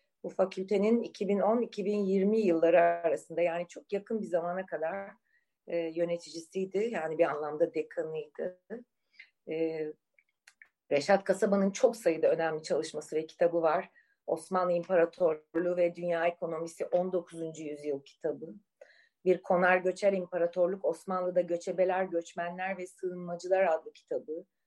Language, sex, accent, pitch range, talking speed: Turkish, female, native, 175-230 Hz, 110 wpm